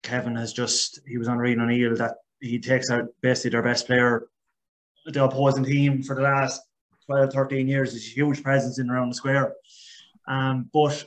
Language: English